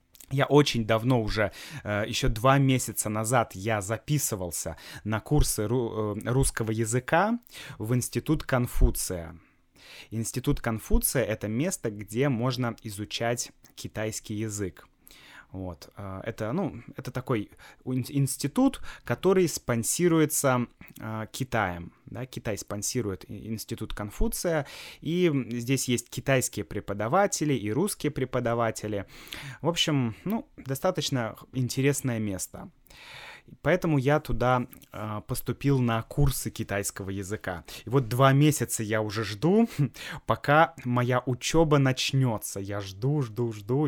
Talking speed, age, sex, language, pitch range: 110 wpm, 20-39, male, Russian, 105-140 Hz